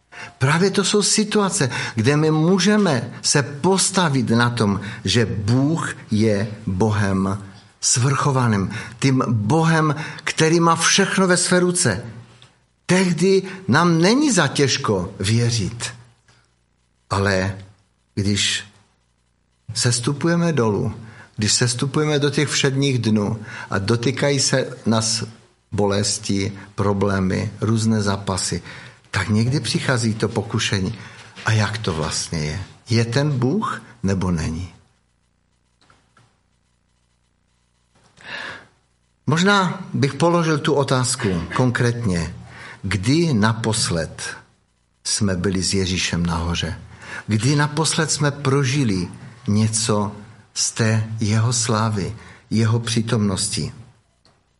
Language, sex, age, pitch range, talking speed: Czech, male, 60-79, 100-145 Hz, 95 wpm